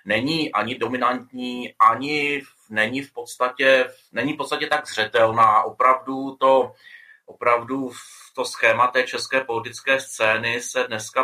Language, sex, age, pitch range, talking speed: Slovak, male, 30-49, 120-135 Hz, 130 wpm